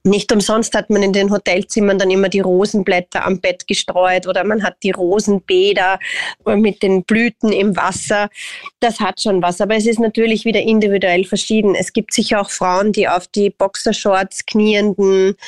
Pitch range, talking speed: 190-215 Hz, 175 wpm